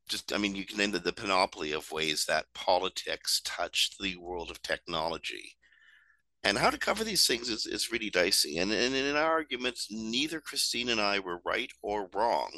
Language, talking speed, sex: English, 190 wpm, male